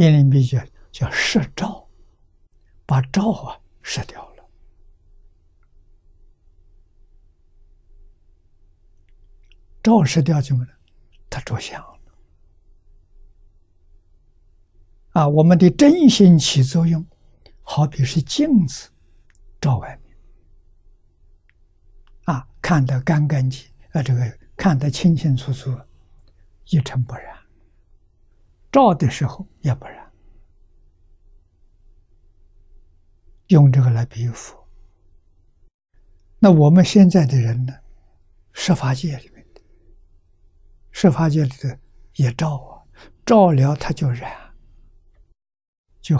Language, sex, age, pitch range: Chinese, male, 60-79, 85-135 Hz